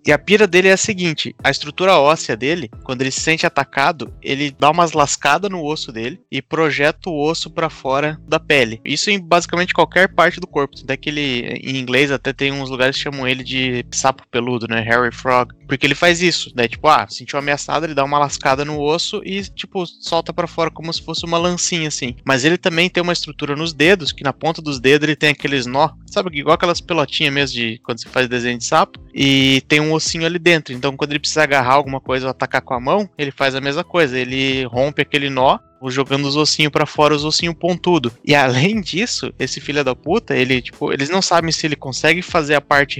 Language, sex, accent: Portuguese, male, Brazilian